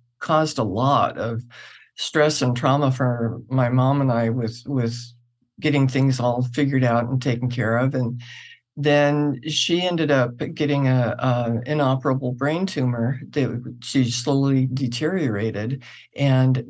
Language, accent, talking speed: English, American, 140 wpm